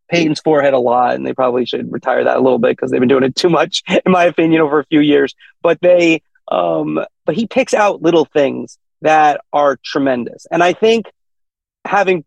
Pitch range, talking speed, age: 135-165 Hz, 210 wpm, 30-49